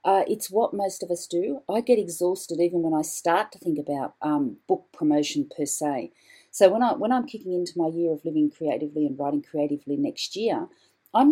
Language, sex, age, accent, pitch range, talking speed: English, female, 40-59, Australian, 160-230 Hz, 205 wpm